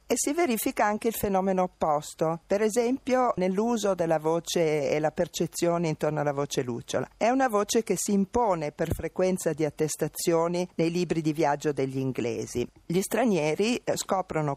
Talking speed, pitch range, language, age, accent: 155 wpm, 145-190 Hz, Italian, 50-69, native